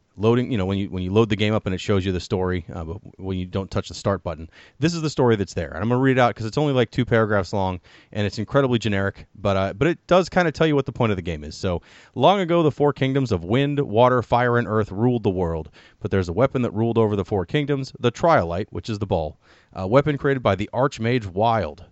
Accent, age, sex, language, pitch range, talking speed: American, 30-49, male, English, 100-135 Hz, 285 wpm